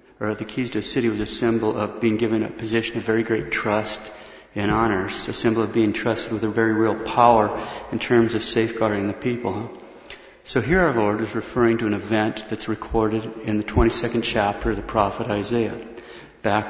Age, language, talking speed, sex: 40-59, English, 200 wpm, male